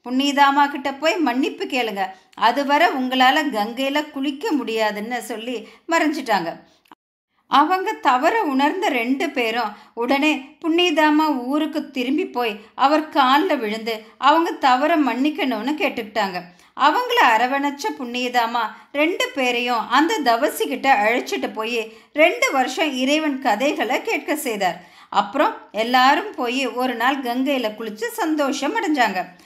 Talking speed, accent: 110 wpm, native